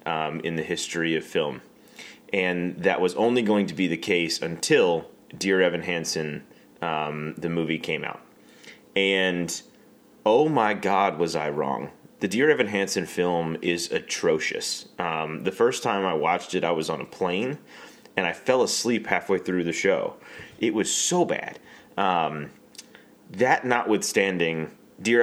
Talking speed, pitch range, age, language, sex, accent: 155 wpm, 80-90 Hz, 30-49, English, male, American